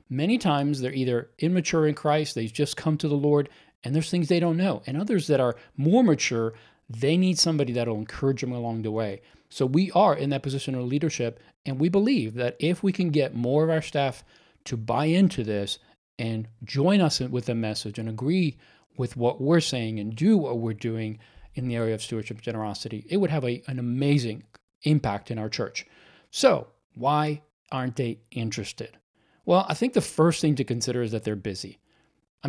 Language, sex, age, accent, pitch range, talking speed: English, male, 40-59, American, 115-155 Hz, 200 wpm